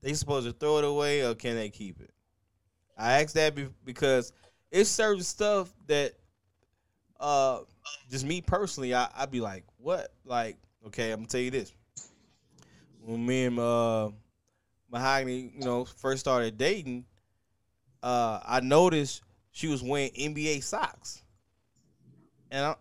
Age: 20-39